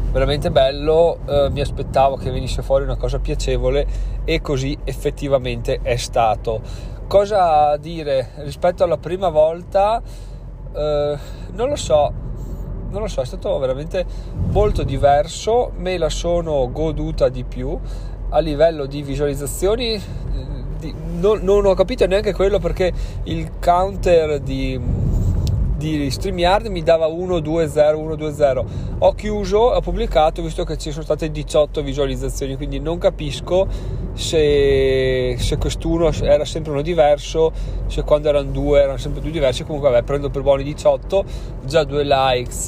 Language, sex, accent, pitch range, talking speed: Italian, male, native, 130-160 Hz, 135 wpm